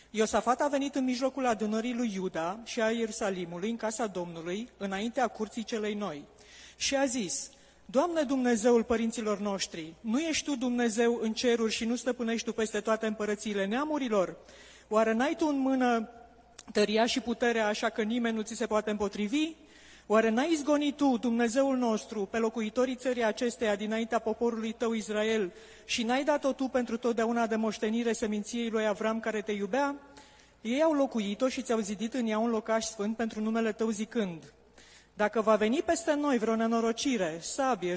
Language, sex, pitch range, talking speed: Romanian, female, 215-250 Hz, 170 wpm